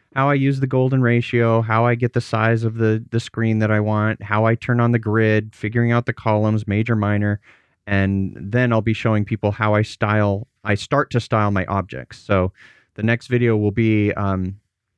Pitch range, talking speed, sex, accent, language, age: 105-125 Hz, 210 wpm, male, American, English, 30-49